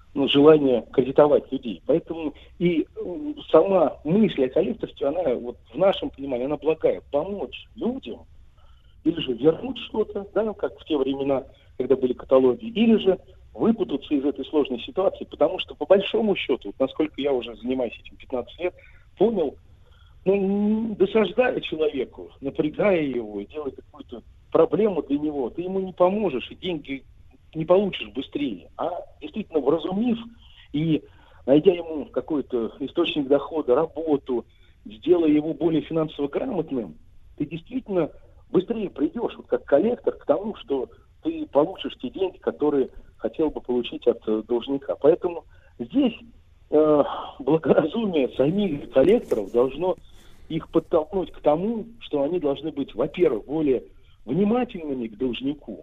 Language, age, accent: Russian, 50-69, native